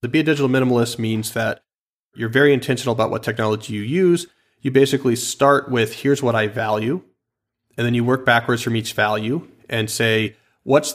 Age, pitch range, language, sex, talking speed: 30-49, 110-130 Hz, English, male, 185 wpm